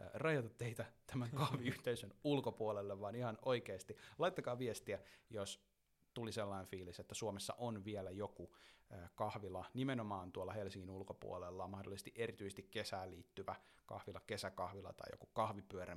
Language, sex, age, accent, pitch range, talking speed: Finnish, male, 30-49, native, 95-120 Hz, 125 wpm